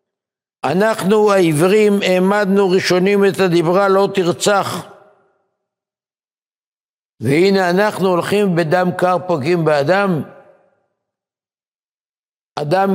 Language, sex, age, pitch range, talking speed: Hebrew, male, 60-79, 175-205 Hz, 75 wpm